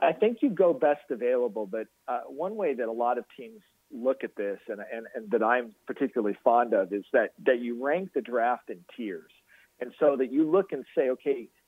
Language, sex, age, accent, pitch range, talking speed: English, male, 40-59, American, 120-190 Hz, 220 wpm